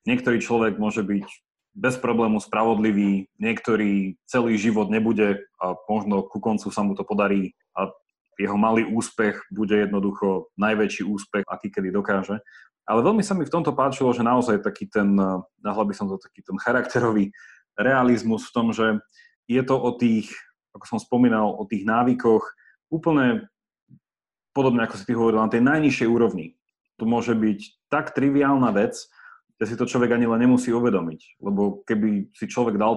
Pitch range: 105-135 Hz